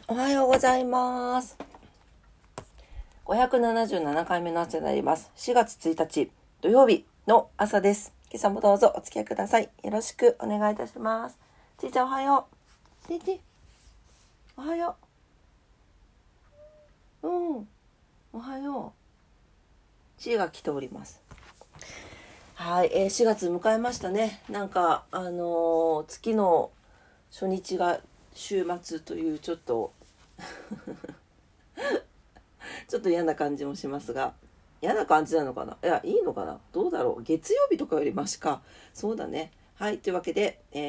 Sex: female